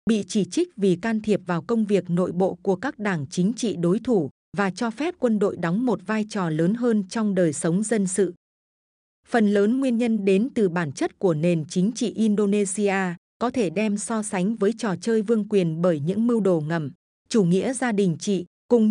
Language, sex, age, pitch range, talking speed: Vietnamese, female, 20-39, 180-225 Hz, 215 wpm